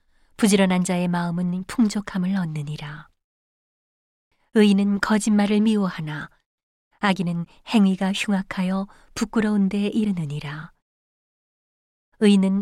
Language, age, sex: Korean, 30-49, female